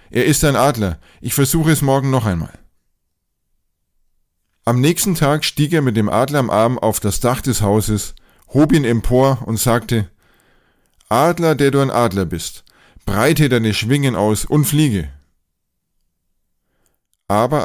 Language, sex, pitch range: German, male, 100-135 Hz